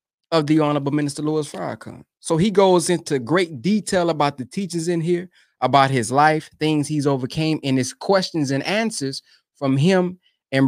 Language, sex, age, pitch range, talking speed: English, male, 20-39, 130-180 Hz, 175 wpm